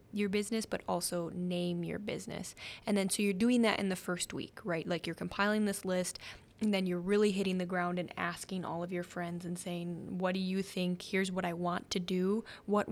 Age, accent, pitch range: 20-39, American, 175-210 Hz